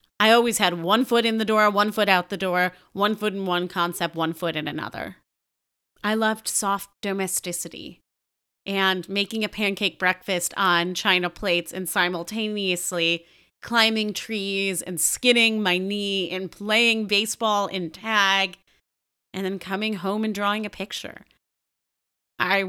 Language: English